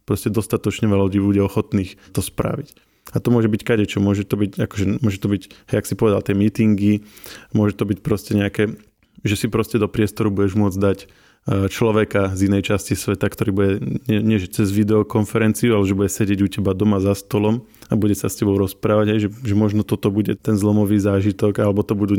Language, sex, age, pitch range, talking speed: Slovak, male, 20-39, 100-110 Hz, 205 wpm